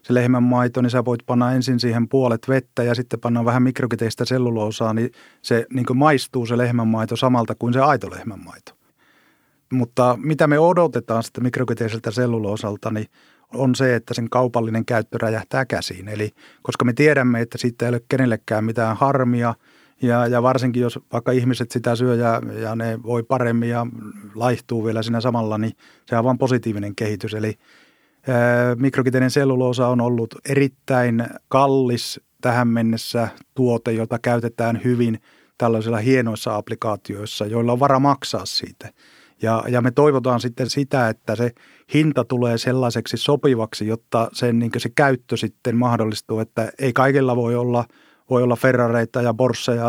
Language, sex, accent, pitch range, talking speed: Finnish, male, native, 115-130 Hz, 155 wpm